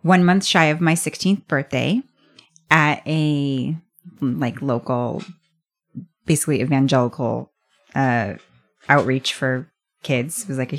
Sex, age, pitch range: female, 30-49, 150-180 Hz